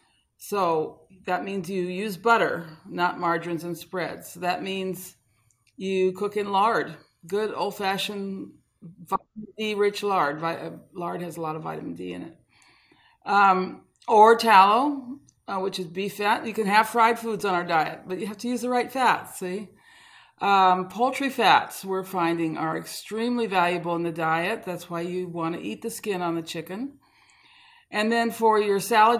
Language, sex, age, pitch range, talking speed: English, female, 50-69, 175-220 Hz, 170 wpm